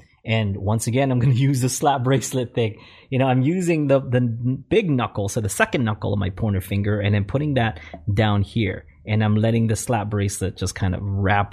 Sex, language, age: male, English, 20-39